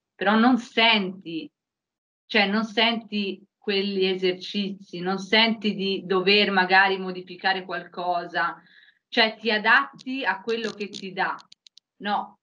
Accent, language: native, Italian